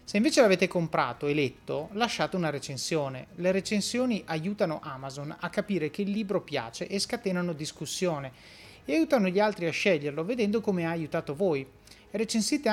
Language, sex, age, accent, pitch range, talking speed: Italian, male, 30-49, native, 155-200 Hz, 160 wpm